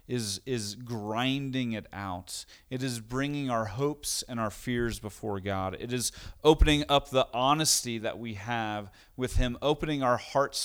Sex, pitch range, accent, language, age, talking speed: male, 95-125 Hz, American, English, 40-59, 165 wpm